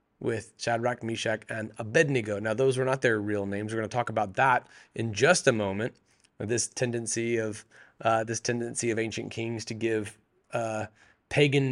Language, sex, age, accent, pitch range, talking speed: English, male, 30-49, American, 115-145 Hz, 175 wpm